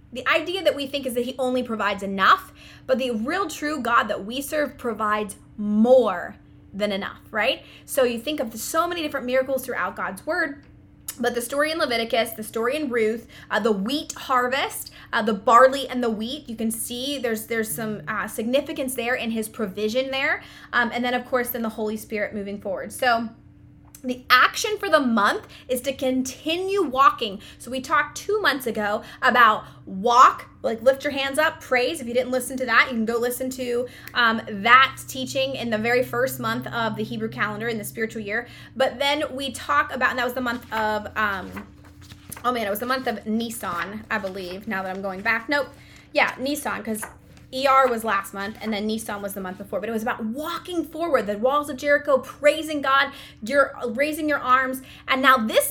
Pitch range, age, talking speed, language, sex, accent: 220-280 Hz, 20-39, 205 wpm, English, female, American